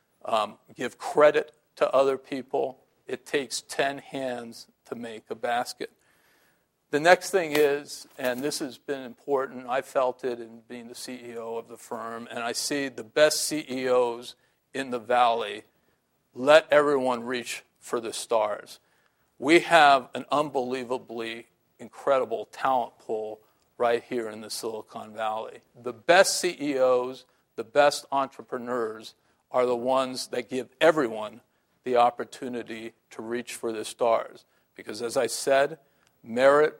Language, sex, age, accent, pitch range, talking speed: English, male, 50-69, American, 120-140 Hz, 140 wpm